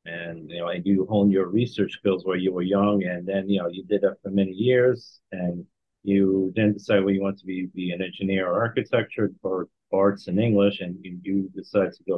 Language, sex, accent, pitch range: English, male, American, 95-105 Hz